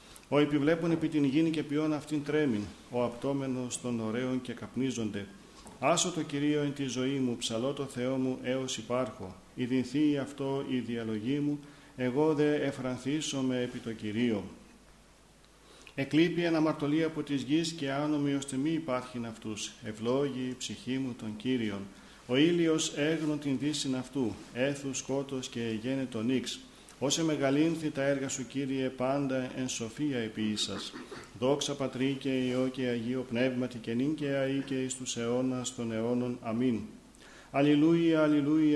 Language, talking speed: Greek, 145 wpm